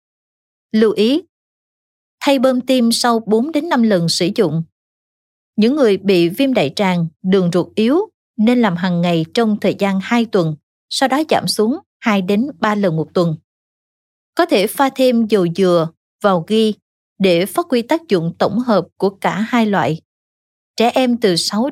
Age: 20-39